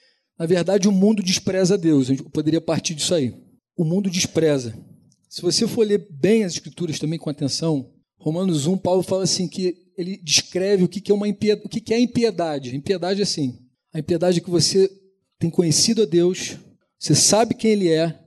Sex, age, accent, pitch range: male, 40-59, Brazilian, 160-210 Hz